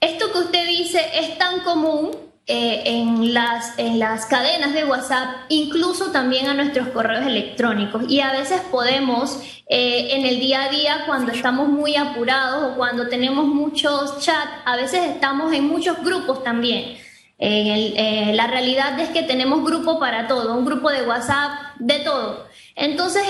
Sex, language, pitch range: female, Spanish, 255-315 Hz